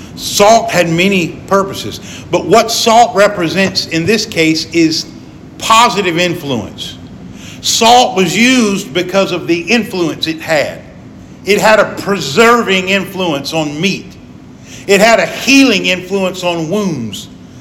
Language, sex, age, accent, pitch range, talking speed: English, male, 50-69, American, 170-215 Hz, 125 wpm